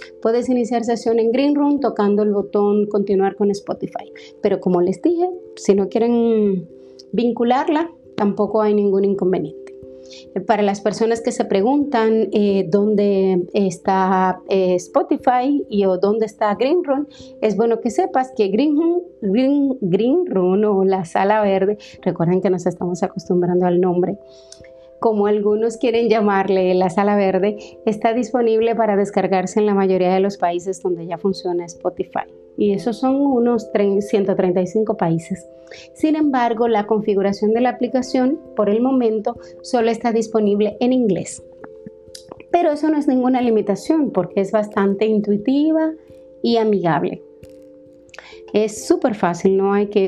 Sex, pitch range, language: female, 190-235 Hz, Spanish